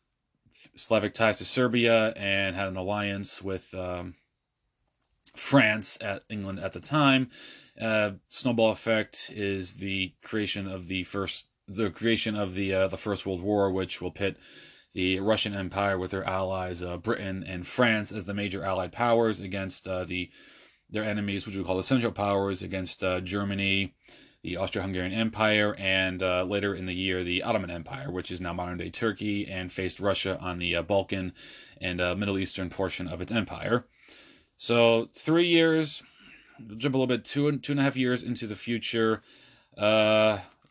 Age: 20-39